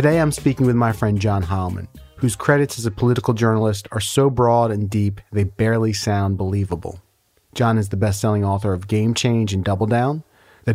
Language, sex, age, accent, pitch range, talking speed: English, male, 30-49, American, 105-130 Hz, 195 wpm